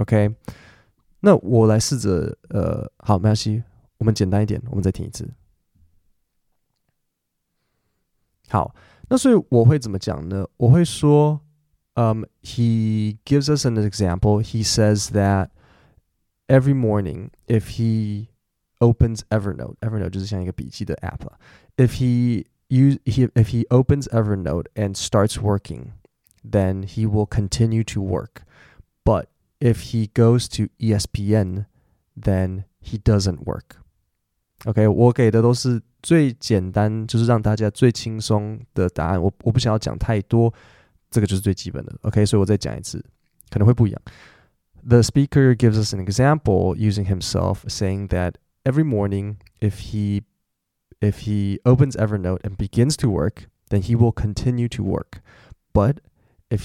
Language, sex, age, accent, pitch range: Chinese, male, 20-39, American, 100-120 Hz